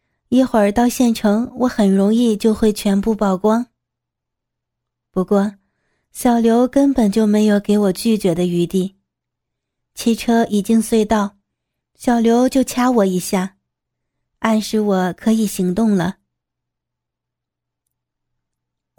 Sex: female